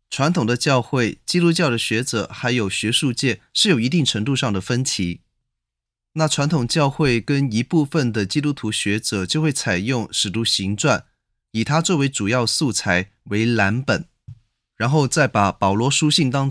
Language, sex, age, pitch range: Chinese, male, 20-39, 110-150 Hz